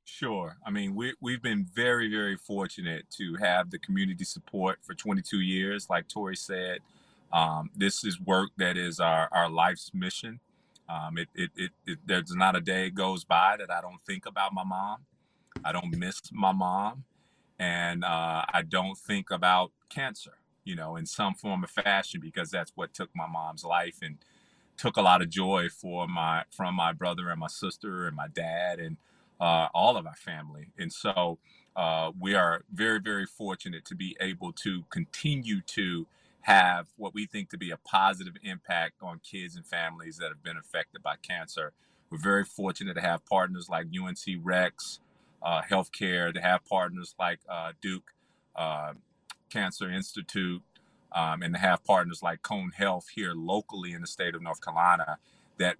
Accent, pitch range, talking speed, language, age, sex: American, 90-115 Hz, 175 wpm, English, 30-49, male